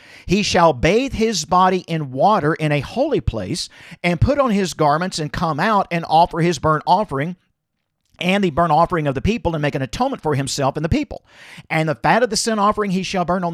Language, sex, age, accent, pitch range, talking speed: English, male, 50-69, American, 150-200 Hz, 225 wpm